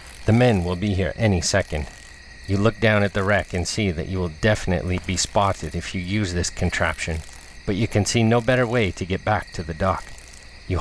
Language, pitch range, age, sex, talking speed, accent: English, 90-110 Hz, 40-59, male, 220 wpm, American